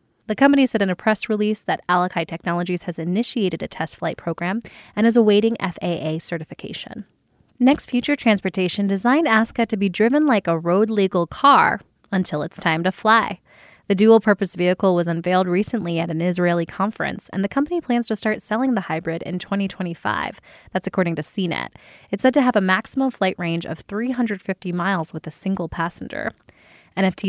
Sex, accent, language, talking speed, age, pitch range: female, American, English, 175 wpm, 20-39, 175-220 Hz